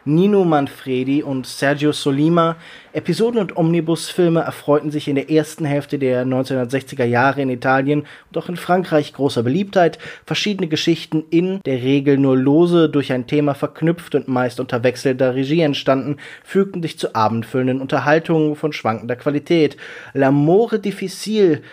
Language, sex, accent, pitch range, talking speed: German, male, German, 130-160 Hz, 145 wpm